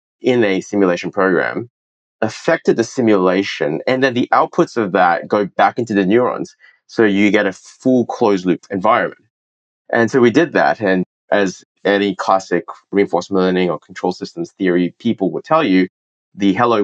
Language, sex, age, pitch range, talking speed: English, male, 30-49, 90-105 Hz, 170 wpm